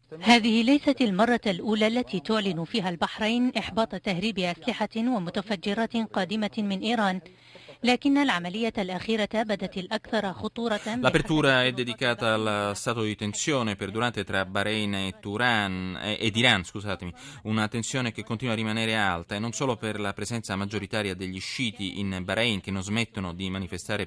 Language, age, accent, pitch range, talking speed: Italian, 30-49, native, 95-135 Hz, 130 wpm